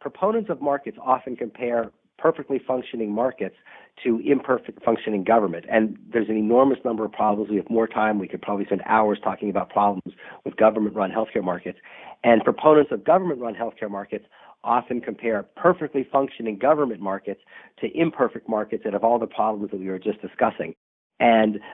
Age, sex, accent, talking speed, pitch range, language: 40-59, male, American, 170 wpm, 105-120 Hz, English